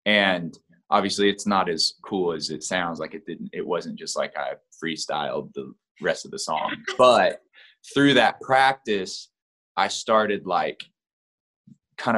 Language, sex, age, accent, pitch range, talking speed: English, male, 20-39, American, 90-140 Hz, 155 wpm